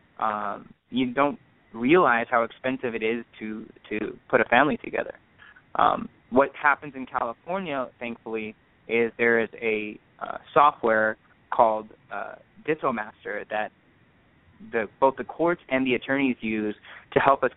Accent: American